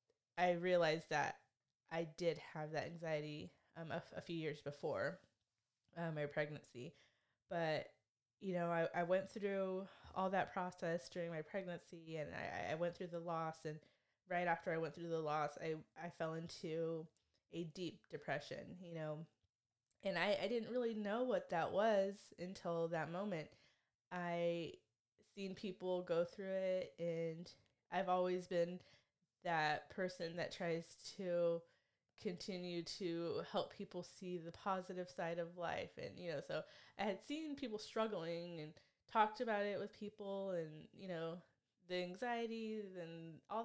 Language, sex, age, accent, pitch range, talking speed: English, female, 20-39, American, 160-190 Hz, 155 wpm